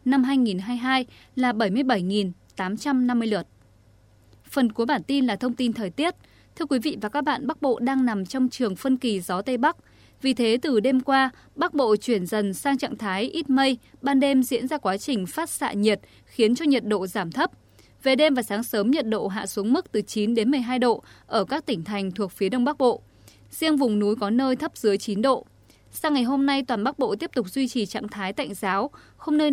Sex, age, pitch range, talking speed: female, 20-39, 210-275 Hz, 225 wpm